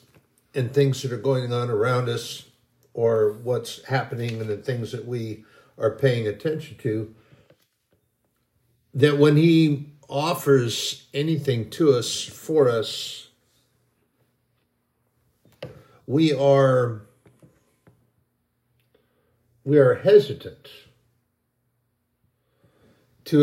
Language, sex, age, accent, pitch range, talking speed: English, male, 60-79, American, 120-140 Hz, 90 wpm